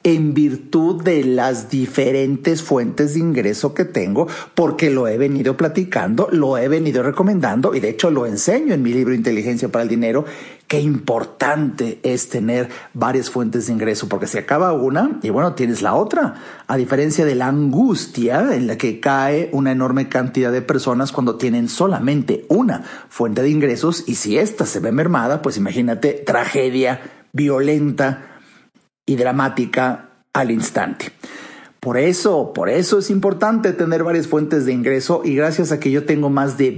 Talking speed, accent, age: 165 wpm, Mexican, 40-59